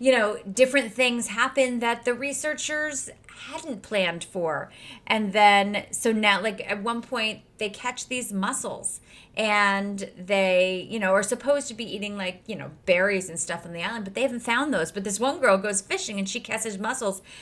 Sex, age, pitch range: female, 30-49, 200-265 Hz